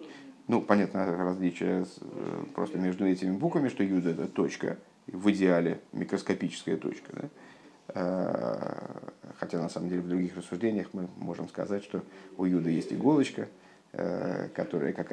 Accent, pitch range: native, 95-130 Hz